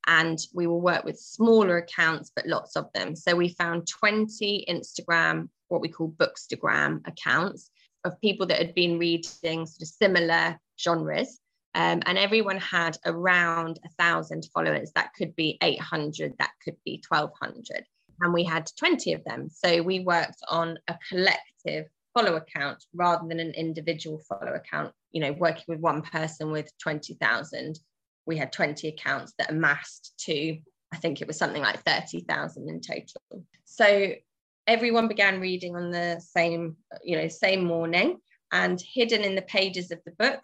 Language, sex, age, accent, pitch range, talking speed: English, female, 20-39, British, 160-185 Hz, 165 wpm